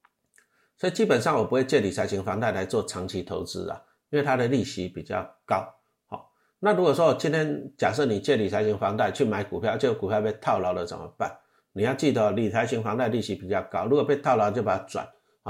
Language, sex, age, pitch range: Chinese, male, 50-69, 105-140 Hz